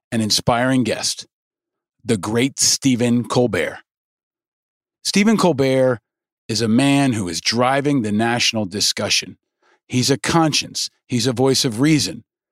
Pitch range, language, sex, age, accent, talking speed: 115-160 Hz, English, male, 40-59, American, 125 wpm